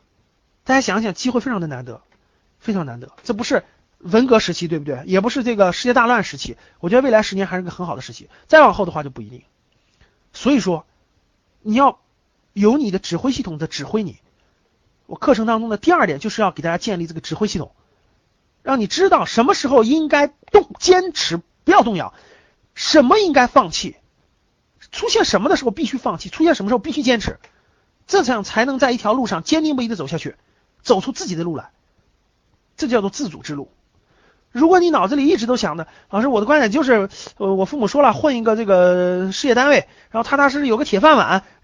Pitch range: 175-275 Hz